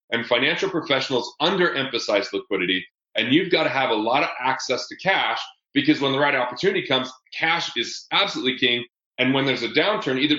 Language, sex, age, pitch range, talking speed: English, male, 30-49, 125-170 Hz, 180 wpm